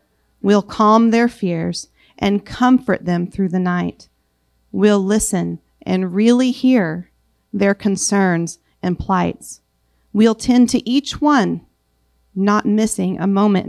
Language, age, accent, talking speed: English, 40-59, American, 125 wpm